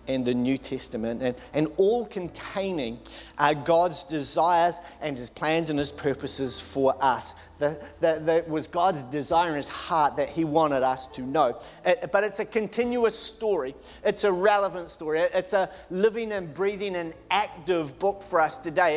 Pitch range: 160-195 Hz